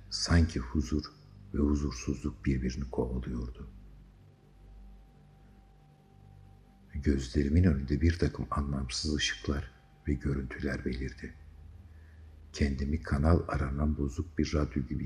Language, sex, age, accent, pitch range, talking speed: Turkish, male, 60-79, native, 70-85 Hz, 90 wpm